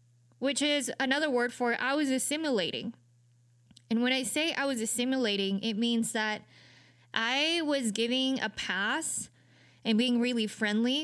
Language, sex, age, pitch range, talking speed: English, female, 20-39, 185-235 Hz, 145 wpm